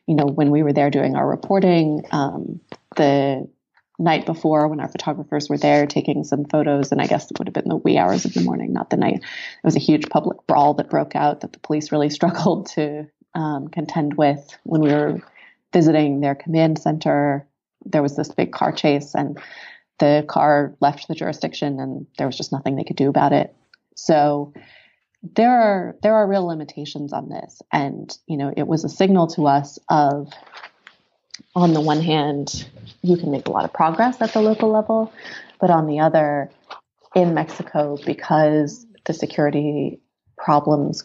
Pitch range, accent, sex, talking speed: 145-170 Hz, American, female, 185 wpm